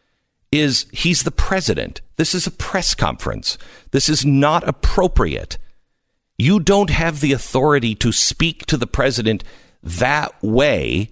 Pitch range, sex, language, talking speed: 110-155 Hz, male, English, 135 wpm